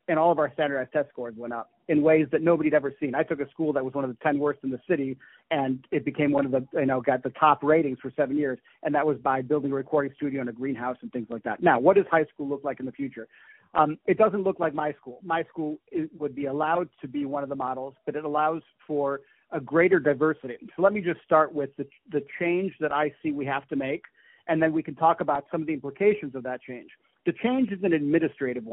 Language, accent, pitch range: English, American, 140-170 Hz